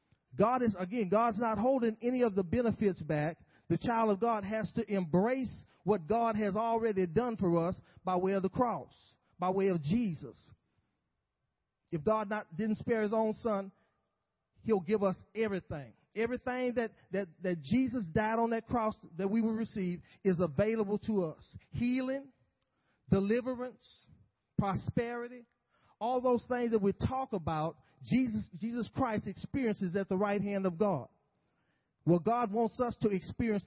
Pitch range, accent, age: 175-225 Hz, American, 40-59